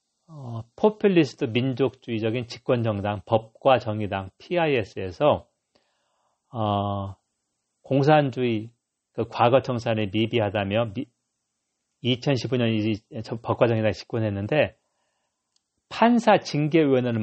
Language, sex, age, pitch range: Korean, male, 40-59, 110-145 Hz